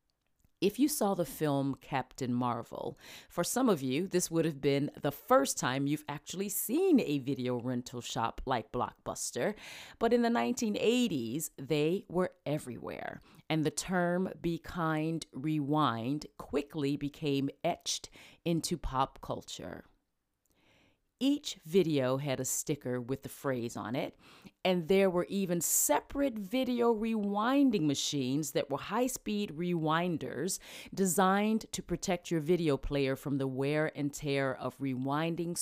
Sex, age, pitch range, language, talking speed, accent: female, 40-59, 140-190 Hz, Ukrainian, 135 wpm, American